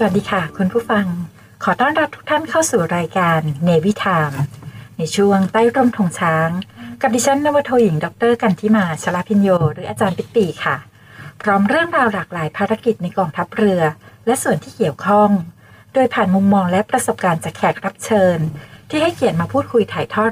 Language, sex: Thai, female